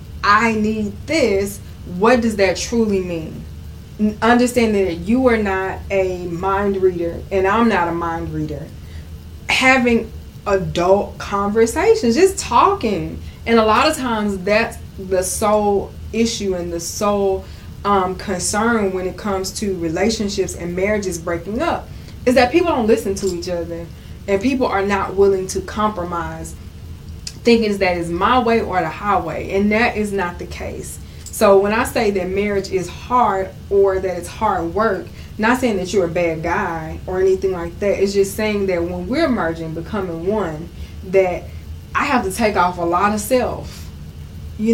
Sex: female